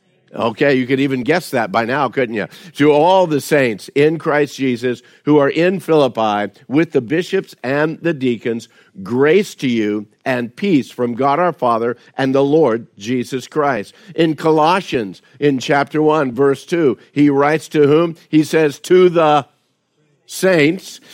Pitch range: 125-155 Hz